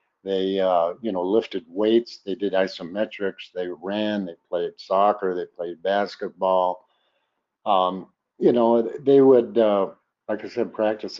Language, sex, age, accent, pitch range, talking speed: English, male, 60-79, American, 95-120 Hz, 145 wpm